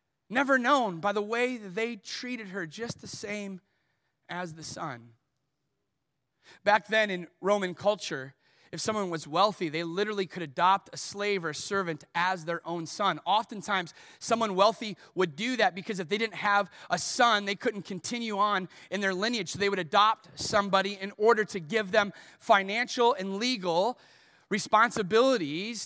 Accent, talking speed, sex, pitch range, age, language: American, 160 wpm, male, 175-230 Hz, 30-49, English